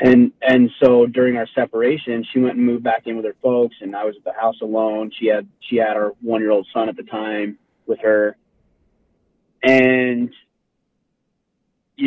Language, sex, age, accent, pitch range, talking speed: English, male, 30-49, American, 110-135 Hz, 180 wpm